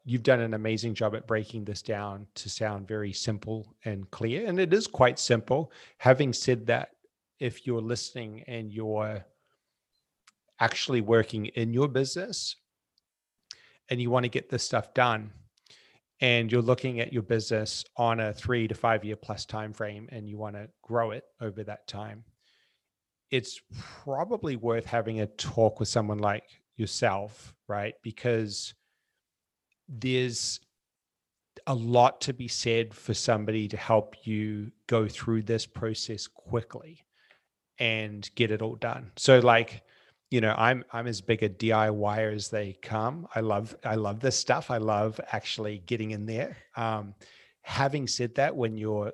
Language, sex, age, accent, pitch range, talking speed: English, male, 40-59, American, 105-125 Hz, 160 wpm